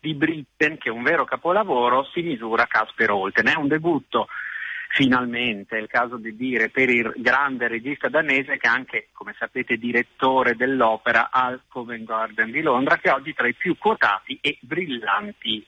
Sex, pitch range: male, 125-160 Hz